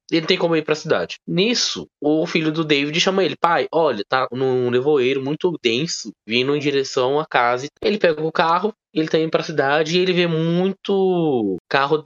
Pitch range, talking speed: 145-185 Hz, 210 wpm